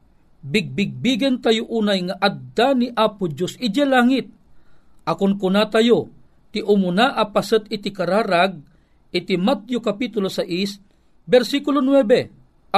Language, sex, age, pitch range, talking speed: Filipino, male, 50-69, 155-220 Hz, 120 wpm